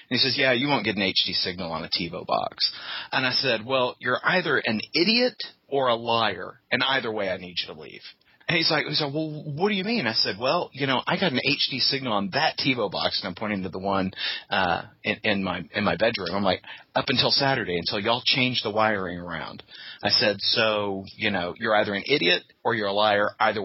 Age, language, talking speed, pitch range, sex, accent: 30-49, English, 235 wpm, 100-140 Hz, male, American